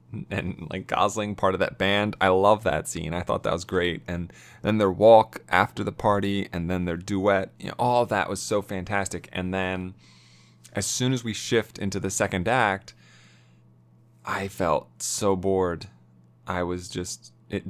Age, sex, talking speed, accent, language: 20-39, male, 175 wpm, American, English